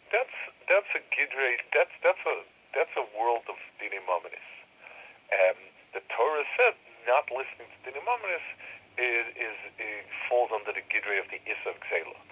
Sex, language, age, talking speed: male, English, 50-69, 155 wpm